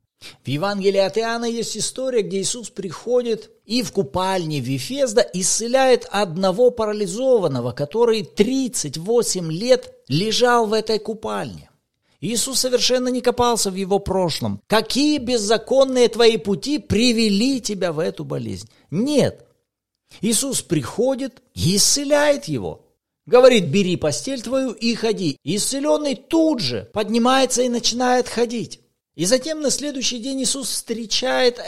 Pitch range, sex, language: 180-245 Hz, male, Russian